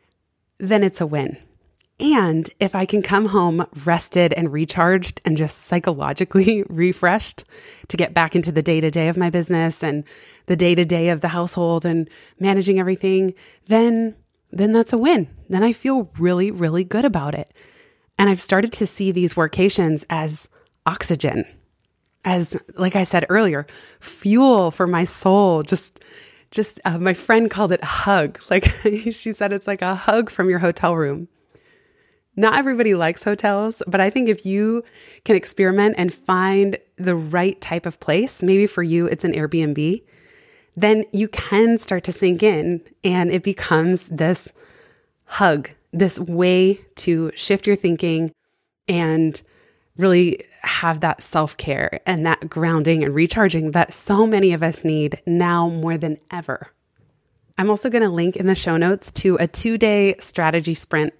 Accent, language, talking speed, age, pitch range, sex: American, English, 160 wpm, 20-39, 165-205 Hz, female